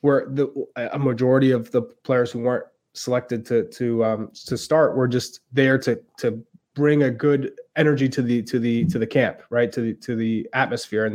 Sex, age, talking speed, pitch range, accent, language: male, 20-39, 205 wpm, 130-165 Hz, American, English